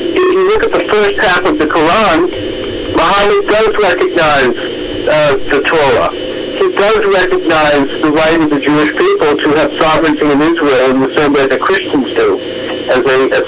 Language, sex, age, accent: English, male, 60-79, American